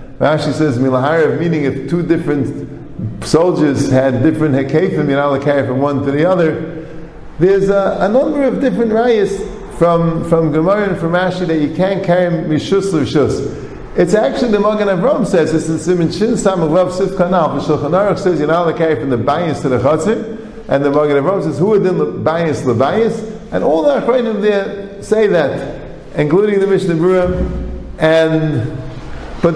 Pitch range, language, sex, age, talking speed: 150-195 Hz, English, male, 50-69, 180 wpm